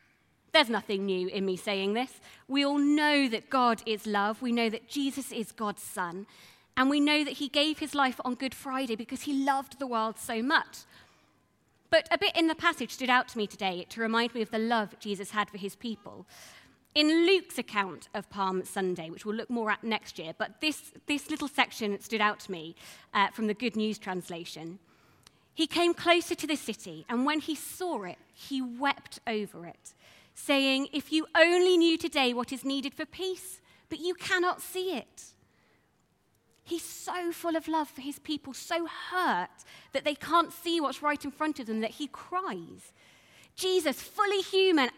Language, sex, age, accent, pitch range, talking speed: English, female, 20-39, British, 215-315 Hz, 195 wpm